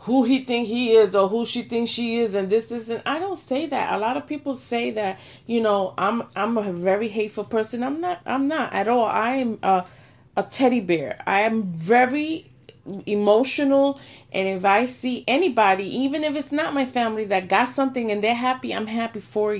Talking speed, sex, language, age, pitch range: 210 wpm, female, English, 30-49, 200-265 Hz